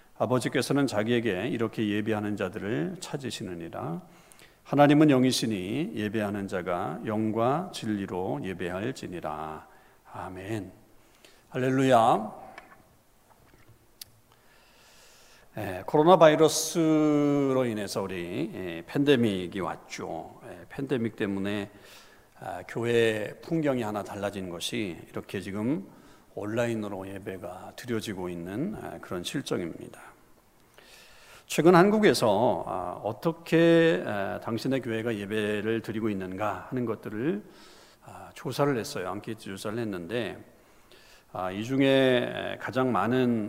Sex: male